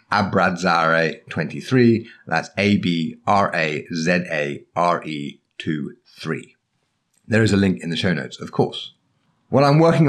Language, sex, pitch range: English, male, 80-110 Hz